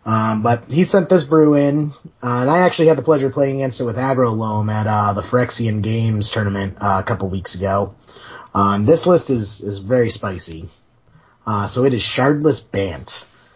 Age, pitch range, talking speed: 30-49, 115-145 Hz, 200 wpm